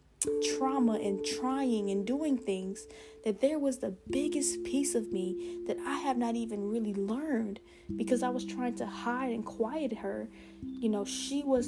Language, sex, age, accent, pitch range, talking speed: English, female, 10-29, American, 185-235 Hz, 175 wpm